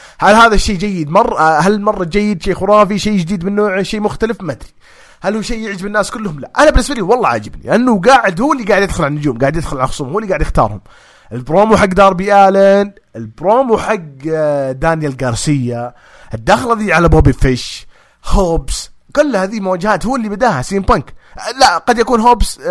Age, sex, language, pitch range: 30-49, male, English, 125-200 Hz